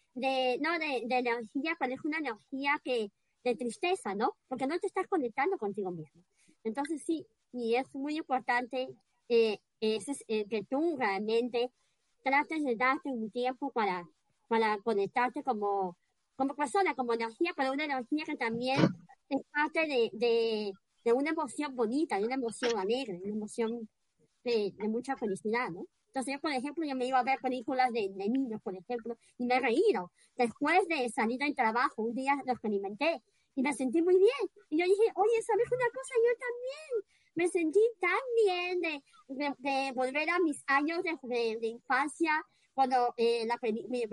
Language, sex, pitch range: Spanish, male, 225-300 Hz